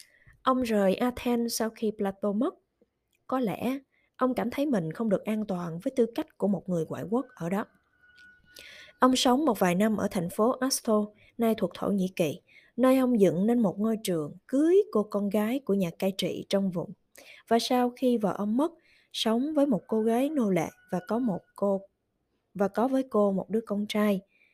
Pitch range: 195-245 Hz